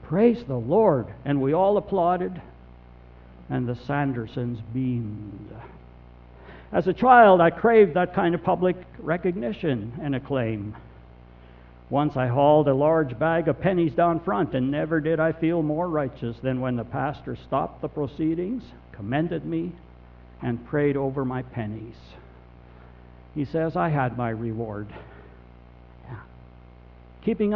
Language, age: English, 60-79